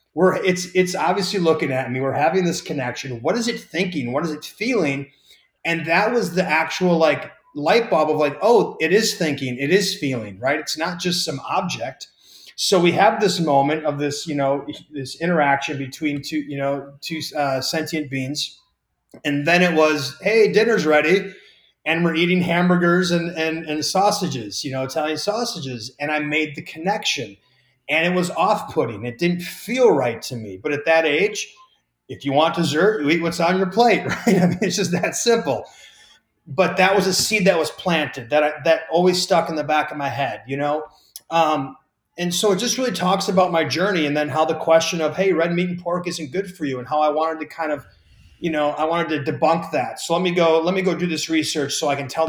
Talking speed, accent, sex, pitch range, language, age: 220 wpm, American, male, 145-180 Hz, English, 30-49